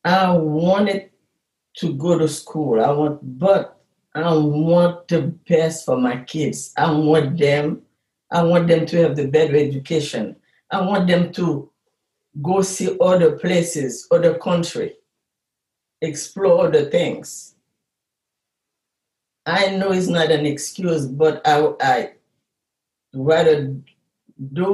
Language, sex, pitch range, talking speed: English, female, 150-185 Hz, 125 wpm